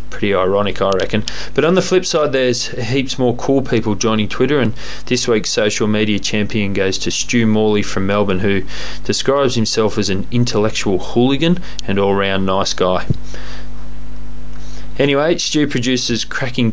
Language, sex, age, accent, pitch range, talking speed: English, male, 20-39, Australian, 100-125 Hz, 160 wpm